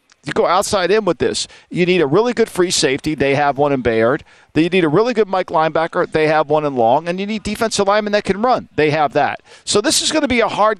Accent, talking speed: American, 270 wpm